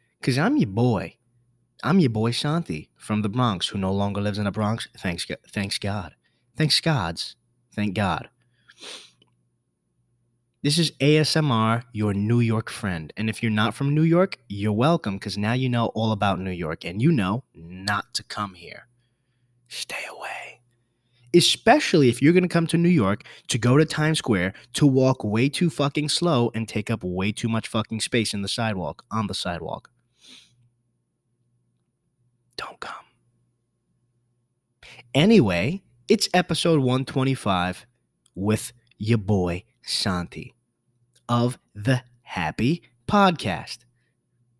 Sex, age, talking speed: male, 20-39, 145 wpm